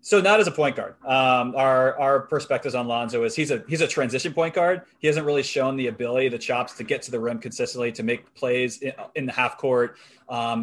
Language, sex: English, male